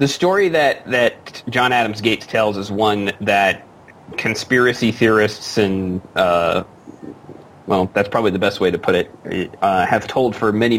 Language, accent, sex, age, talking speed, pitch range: English, American, male, 30-49, 150 wpm, 95-115 Hz